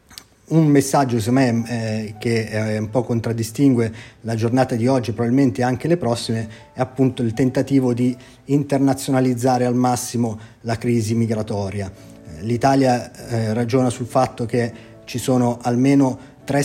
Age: 30-49